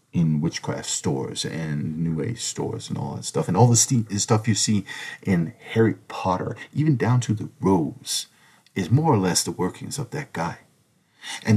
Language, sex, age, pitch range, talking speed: English, male, 50-69, 95-135 Hz, 180 wpm